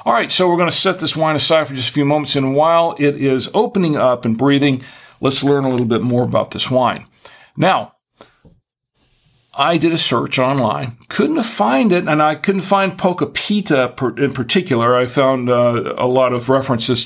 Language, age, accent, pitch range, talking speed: English, 50-69, American, 120-150 Hz, 195 wpm